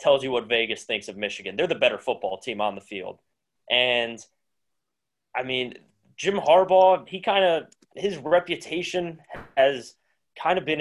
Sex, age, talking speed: male, 20-39, 160 wpm